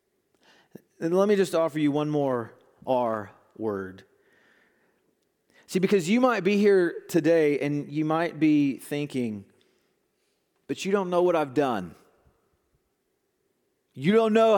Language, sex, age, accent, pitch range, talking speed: English, male, 40-59, American, 150-210 Hz, 130 wpm